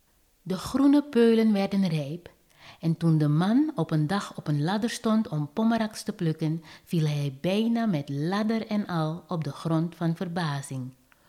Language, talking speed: Dutch, 170 wpm